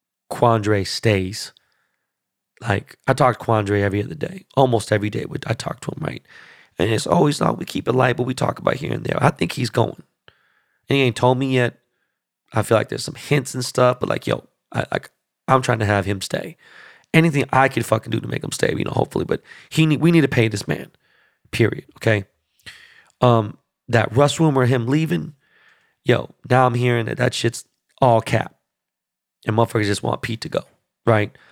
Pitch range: 115-150 Hz